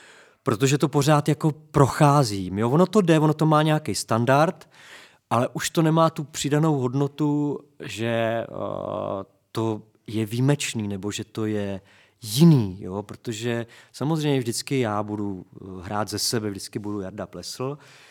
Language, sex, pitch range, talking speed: Czech, male, 110-140 Hz, 140 wpm